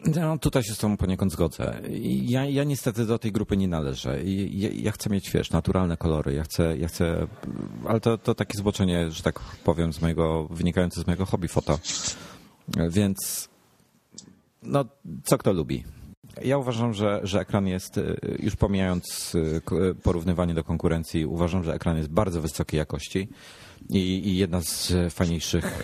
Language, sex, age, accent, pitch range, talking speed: Polish, male, 40-59, native, 85-105 Hz, 160 wpm